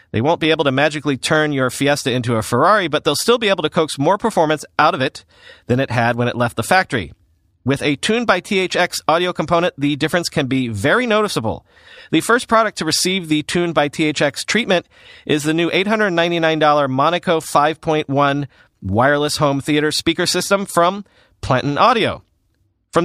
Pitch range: 135-175 Hz